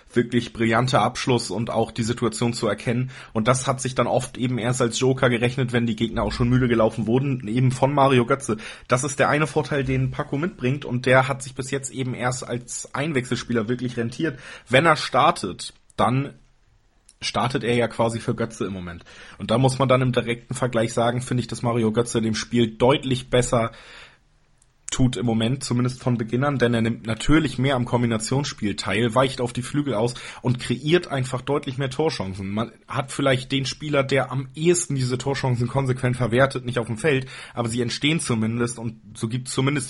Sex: male